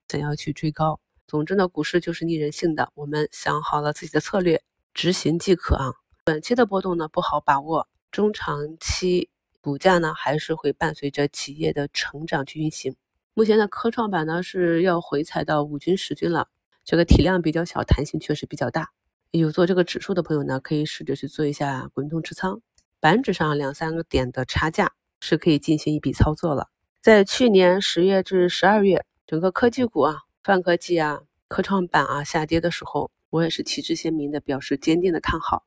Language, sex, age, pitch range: Chinese, female, 30-49, 150-185 Hz